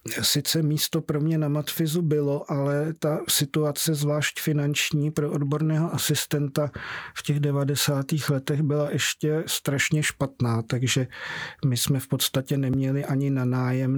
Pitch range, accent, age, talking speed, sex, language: 125-145 Hz, native, 50-69, 135 wpm, male, Czech